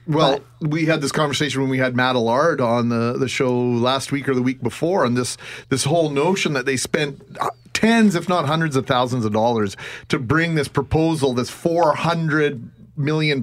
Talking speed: 190 wpm